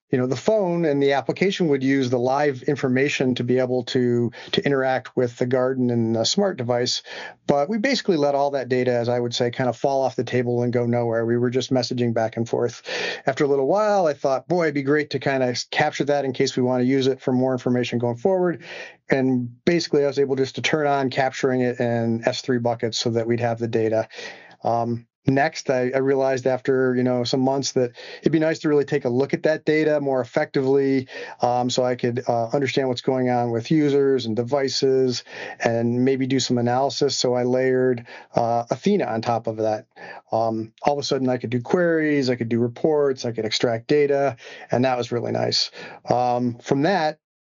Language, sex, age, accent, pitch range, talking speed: English, male, 40-59, American, 125-140 Hz, 220 wpm